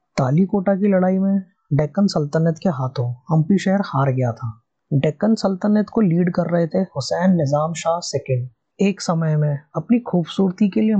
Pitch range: 145-195 Hz